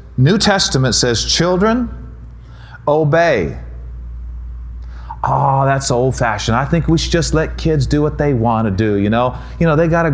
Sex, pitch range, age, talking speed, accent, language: male, 120-165 Hz, 30-49, 165 wpm, American, English